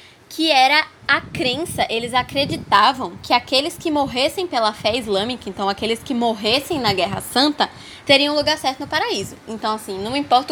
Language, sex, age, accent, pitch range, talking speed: Portuguese, female, 10-29, Brazilian, 210-285 Hz, 165 wpm